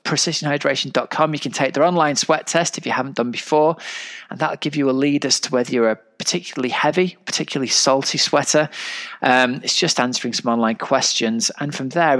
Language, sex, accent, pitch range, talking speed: English, male, British, 115-150 Hz, 190 wpm